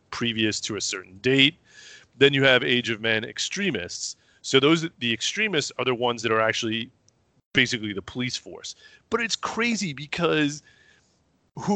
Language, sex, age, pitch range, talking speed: English, male, 30-49, 105-130 Hz, 160 wpm